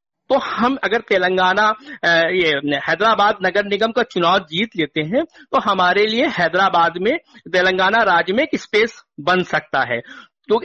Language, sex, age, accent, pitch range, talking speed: Hindi, male, 50-69, native, 170-230 Hz, 145 wpm